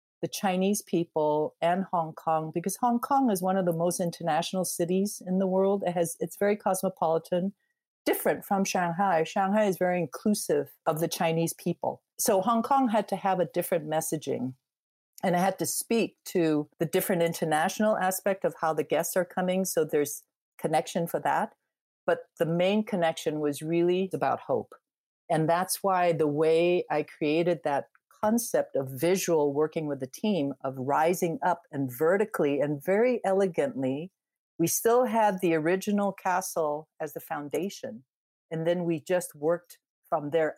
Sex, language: female, English